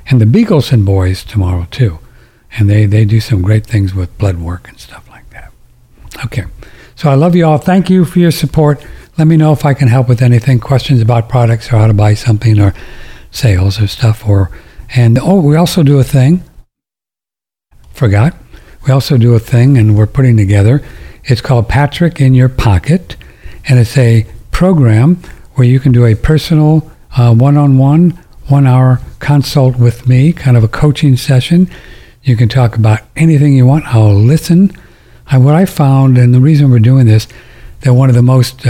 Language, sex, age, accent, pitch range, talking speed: English, male, 60-79, American, 110-140 Hz, 190 wpm